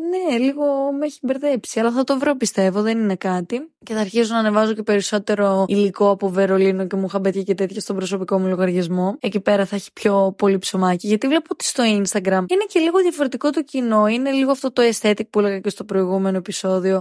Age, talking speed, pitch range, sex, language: 20-39, 215 wpm, 195-270 Hz, female, Greek